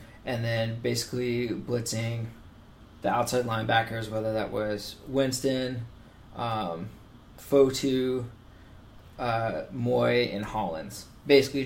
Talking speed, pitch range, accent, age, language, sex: 95 wpm, 110-125 Hz, American, 20-39, English, male